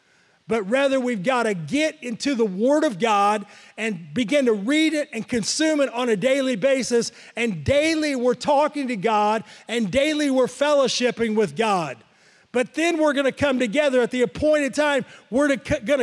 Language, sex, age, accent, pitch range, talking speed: English, male, 40-59, American, 210-270 Hz, 180 wpm